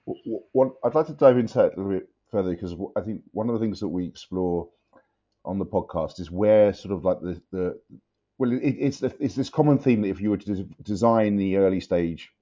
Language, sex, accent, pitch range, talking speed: English, male, British, 85-110 Hz, 230 wpm